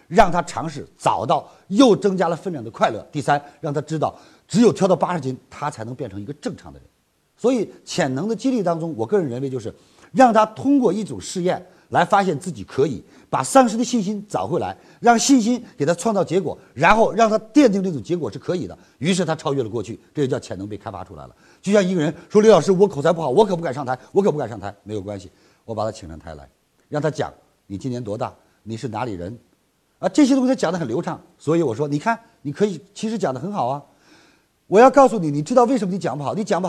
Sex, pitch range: male, 135-210 Hz